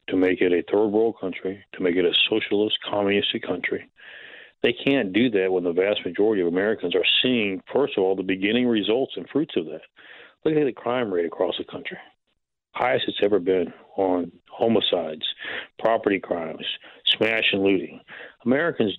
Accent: American